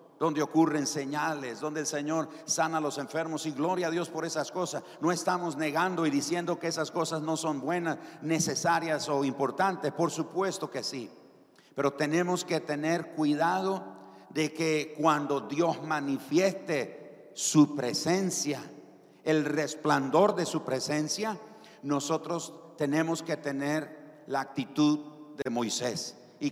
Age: 50-69